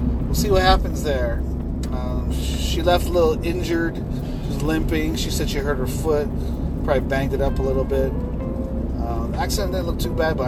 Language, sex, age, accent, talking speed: English, male, 30-49, American, 195 wpm